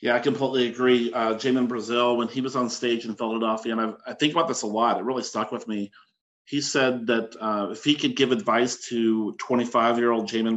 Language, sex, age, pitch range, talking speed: English, male, 40-59, 110-130 Hz, 220 wpm